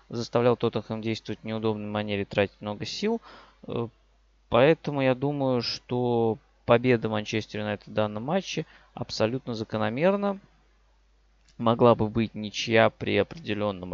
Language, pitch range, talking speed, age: Russian, 100-125 Hz, 120 wpm, 20-39